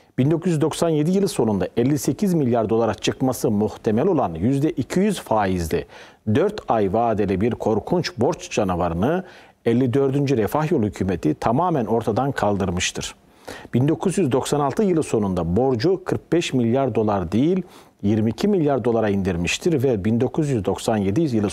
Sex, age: male, 40-59